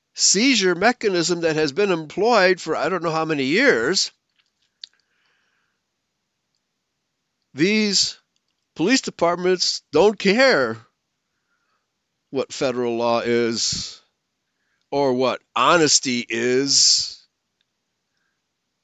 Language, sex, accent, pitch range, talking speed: English, male, American, 140-200 Hz, 85 wpm